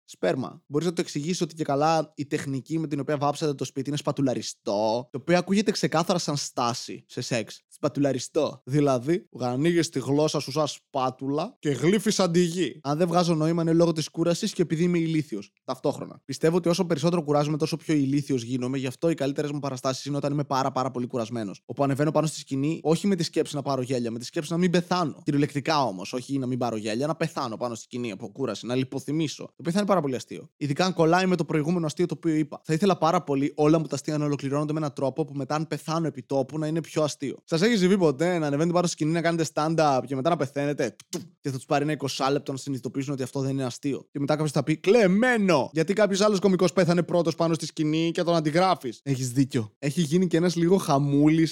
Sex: male